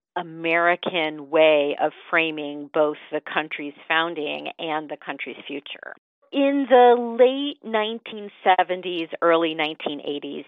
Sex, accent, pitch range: female, American, 150-180 Hz